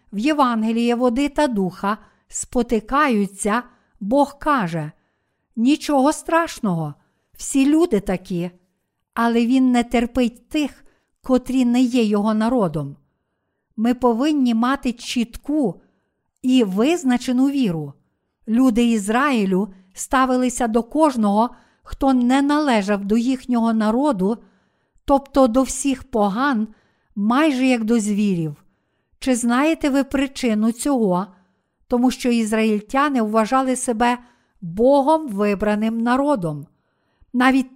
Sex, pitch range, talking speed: female, 215-265 Hz, 100 wpm